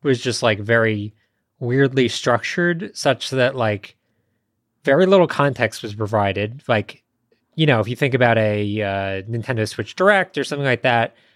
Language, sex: English, male